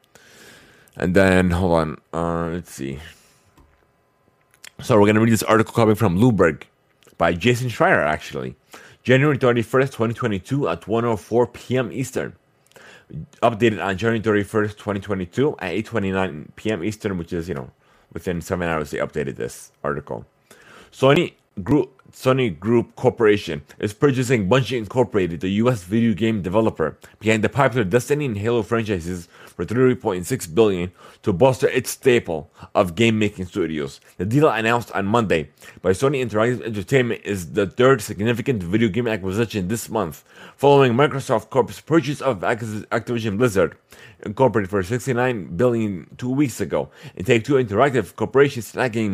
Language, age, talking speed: English, 30-49, 145 wpm